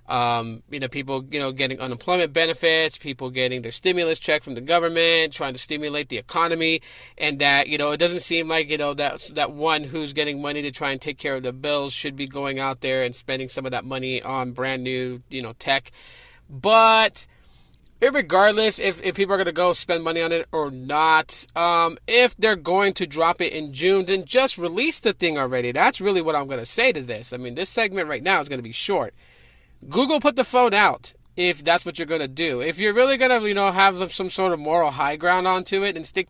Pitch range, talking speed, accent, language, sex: 140-185 Hz, 235 wpm, American, English, male